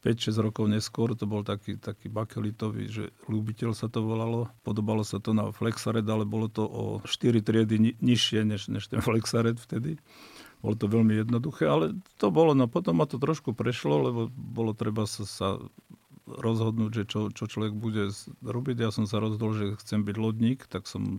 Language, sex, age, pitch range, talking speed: Slovak, male, 50-69, 110-120 Hz, 185 wpm